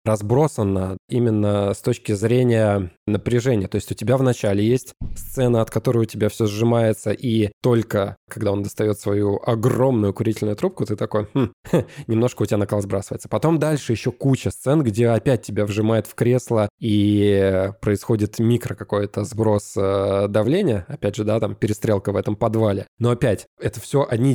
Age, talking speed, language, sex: 20-39, 165 wpm, Russian, male